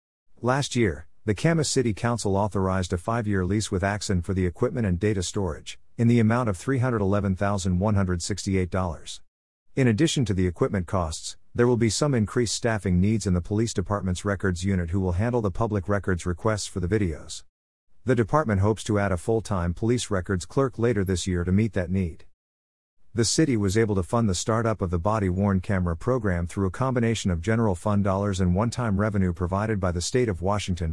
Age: 50-69